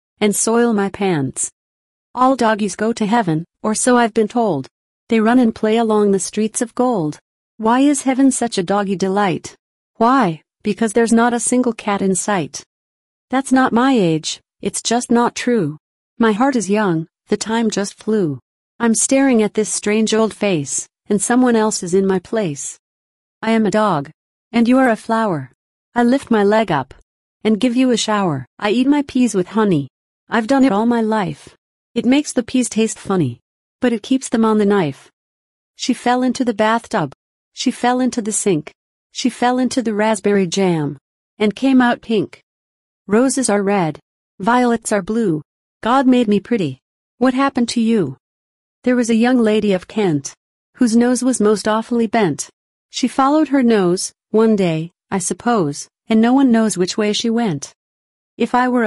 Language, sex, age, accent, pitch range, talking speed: English, female, 40-59, American, 195-240 Hz, 180 wpm